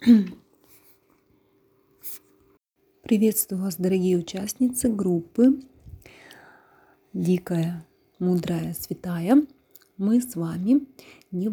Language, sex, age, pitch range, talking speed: Russian, female, 30-49, 175-210 Hz, 60 wpm